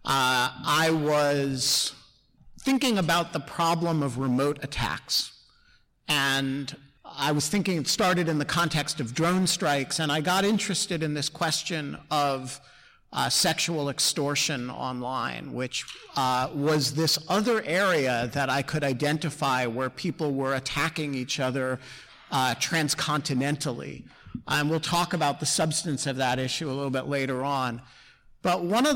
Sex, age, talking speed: male, 50-69, 145 wpm